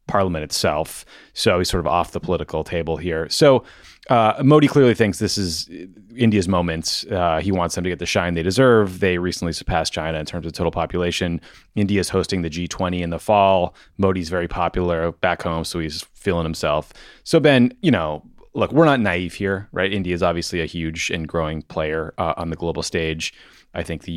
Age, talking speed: 30-49, 200 wpm